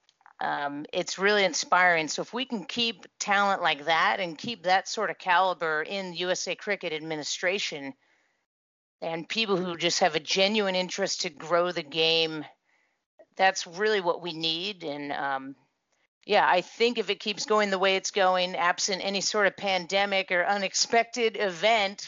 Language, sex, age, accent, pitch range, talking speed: English, female, 40-59, American, 170-200 Hz, 165 wpm